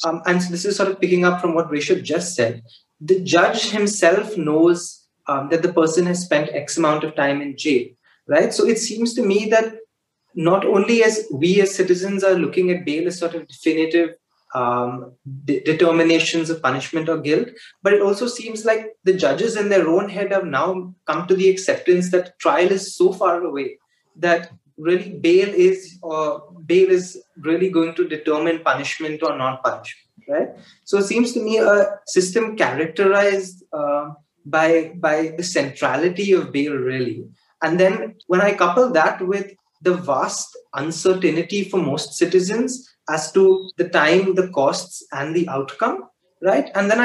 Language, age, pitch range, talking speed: English, 30-49, 160-195 Hz, 175 wpm